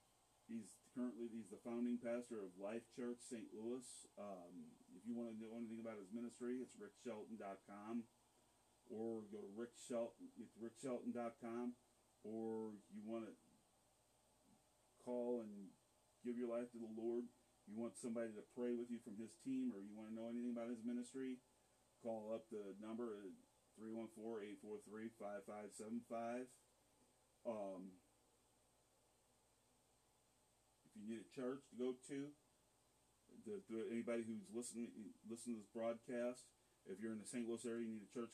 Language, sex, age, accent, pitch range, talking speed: English, male, 40-59, American, 110-125 Hz, 160 wpm